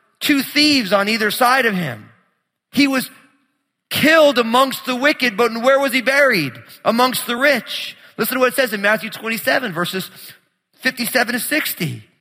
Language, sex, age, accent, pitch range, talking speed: English, male, 30-49, American, 140-230 Hz, 160 wpm